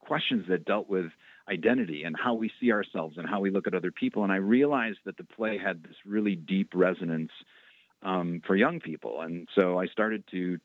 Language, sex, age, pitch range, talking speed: English, male, 40-59, 85-105 Hz, 210 wpm